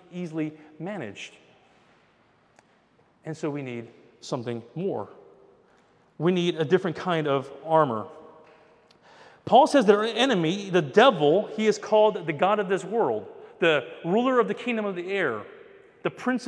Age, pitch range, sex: 40-59, 160-230 Hz, male